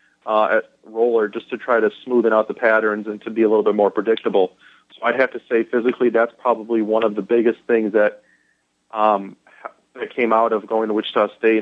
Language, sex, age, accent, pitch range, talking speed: English, male, 30-49, American, 105-120 Hz, 220 wpm